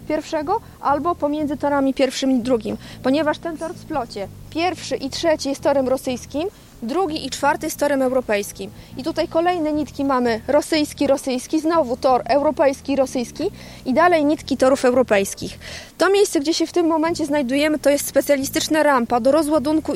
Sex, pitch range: female, 260-305 Hz